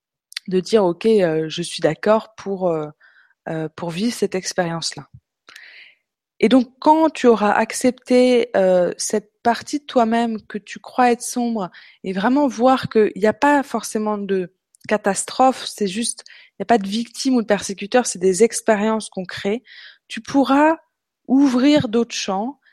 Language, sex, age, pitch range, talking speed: French, female, 20-39, 195-235 Hz, 160 wpm